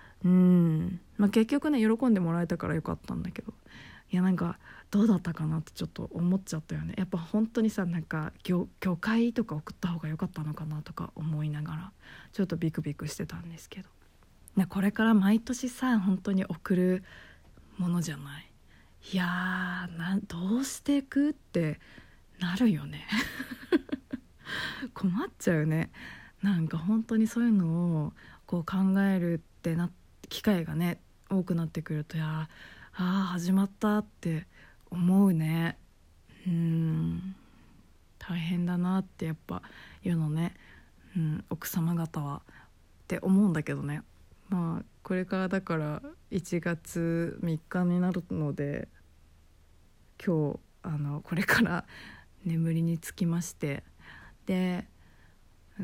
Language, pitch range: Japanese, 155-190 Hz